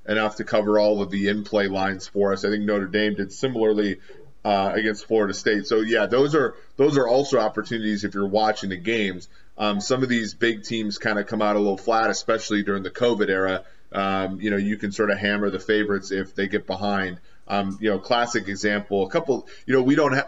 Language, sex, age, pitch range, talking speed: English, male, 30-49, 100-120 Hz, 225 wpm